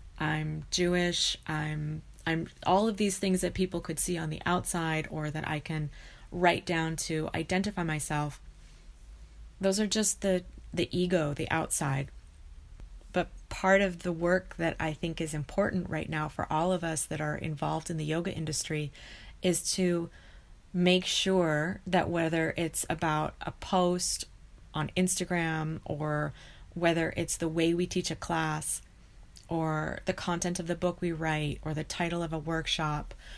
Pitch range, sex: 155-180 Hz, female